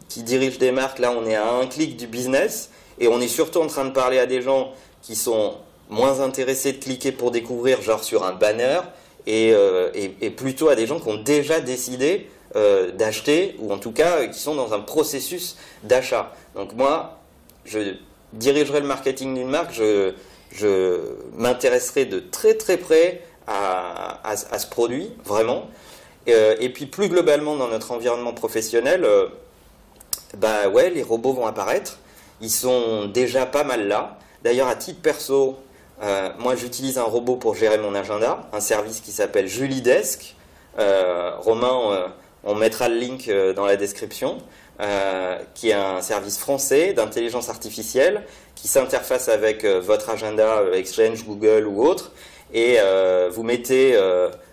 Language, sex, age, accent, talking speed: French, male, 30-49, French, 170 wpm